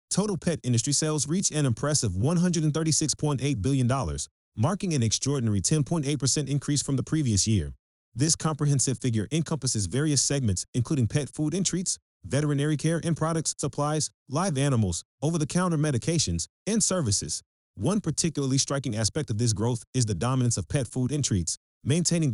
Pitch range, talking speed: 110-150 Hz, 150 wpm